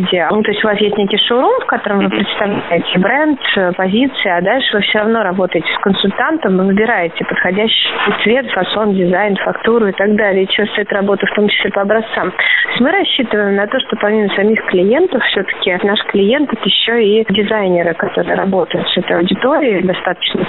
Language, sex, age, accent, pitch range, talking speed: Russian, female, 30-49, native, 180-220 Hz, 180 wpm